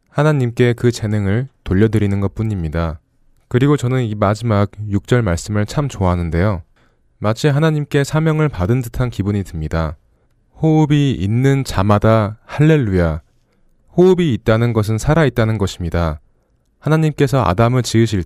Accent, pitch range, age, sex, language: native, 95-125 Hz, 20-39, male, Korean